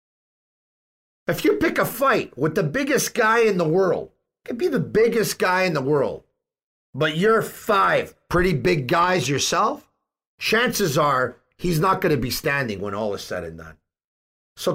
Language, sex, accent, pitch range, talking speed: English, male, American, 130-195 Hz, 175 wpm